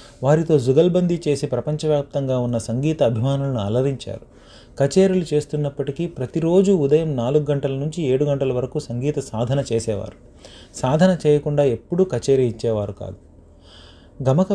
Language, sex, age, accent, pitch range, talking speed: Telugu, male, 30-49, native, 120-155 Hz, 115 wpm